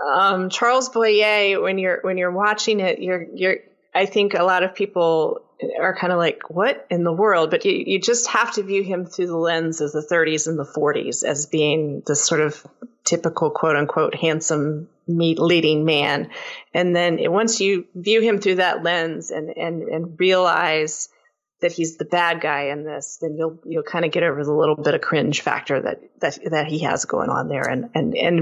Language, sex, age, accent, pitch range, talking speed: English, female, 30-49, American, 160-200 Hz, 205 wpm